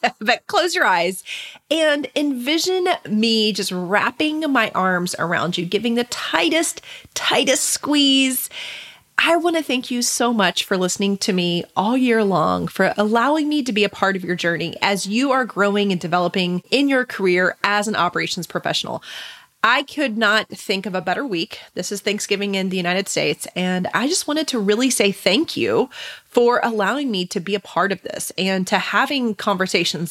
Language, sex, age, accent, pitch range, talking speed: English, female, 30-49, American, 185-250 Hz, 180 wpm